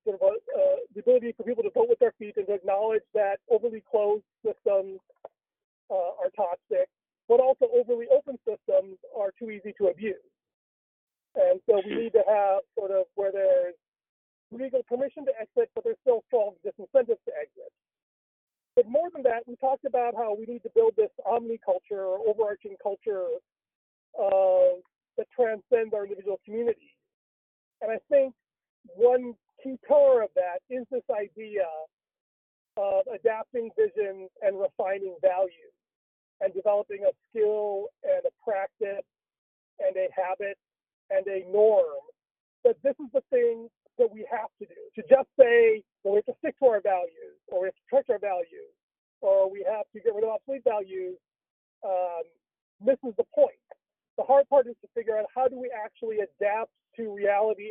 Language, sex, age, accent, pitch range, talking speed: English, male, 40-59, American, 205-310 Hz, 170 wpm